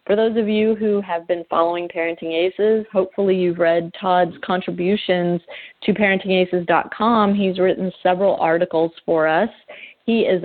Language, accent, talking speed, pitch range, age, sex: English, American, 145 wpm, 170-205 Hz, 40-59, female